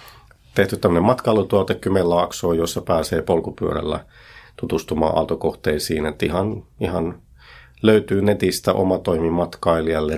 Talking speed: 90 wpm